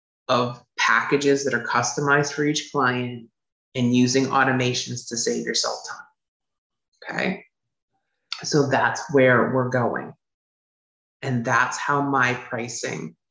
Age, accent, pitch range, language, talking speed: 30-49, American, 125-165 Hz, English, 115 wpm